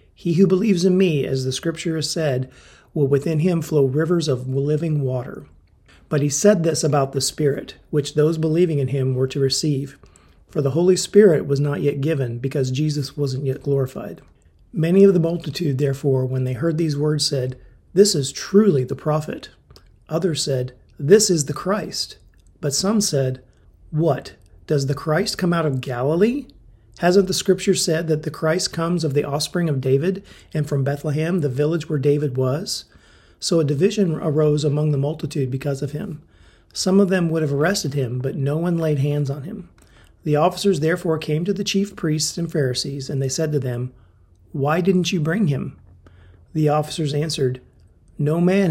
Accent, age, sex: American, 40-59, male